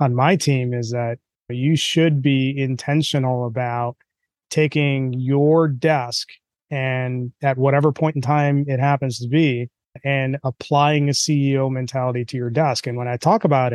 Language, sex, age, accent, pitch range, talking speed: English, male, 30-49, American, 125-150 Hz, 155 wpm